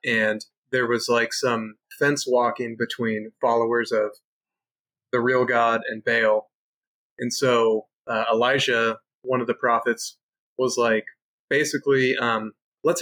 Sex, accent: male, American